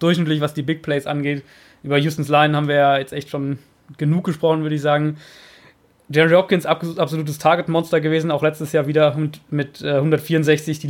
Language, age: German, 20-39